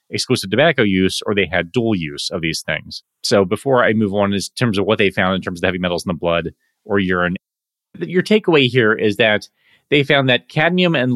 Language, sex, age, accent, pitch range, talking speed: English, male, 30-49, American, 95-120 Hz, 225 wpm